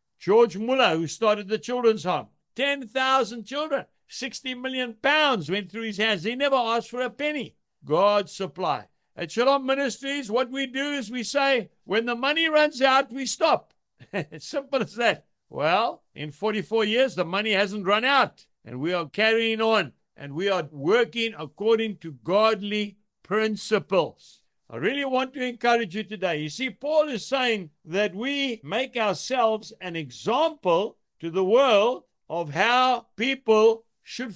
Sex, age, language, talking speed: male, 60-79, English, 155 wpm